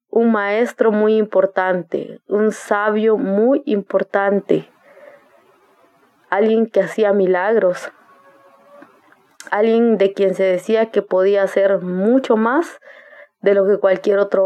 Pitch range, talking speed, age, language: 190-230 Hz, 110 wpm, 20-39, Spanish